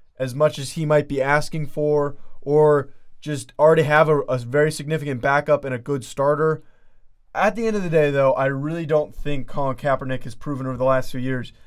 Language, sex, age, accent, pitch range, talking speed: English, male, 20-39, American, 135-170 Hz, 210 wpm